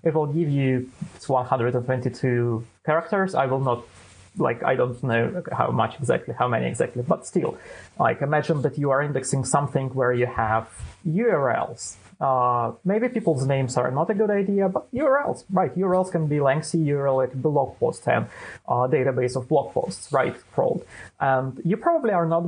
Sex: male